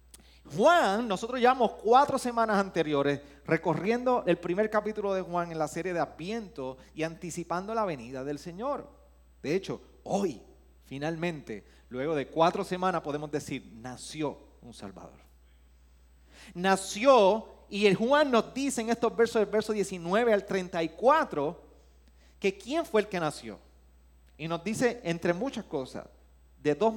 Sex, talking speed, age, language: male, 140 wpm, 30-49, Spanish